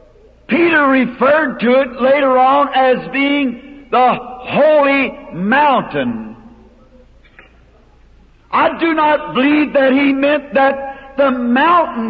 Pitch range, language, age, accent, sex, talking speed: 250-305 Hz, English, 50-69, American, male, 105 wpm